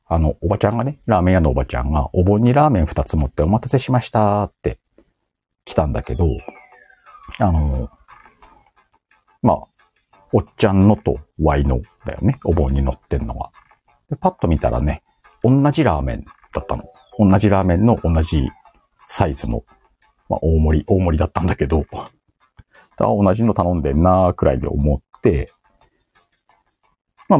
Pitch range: 75-110 Hz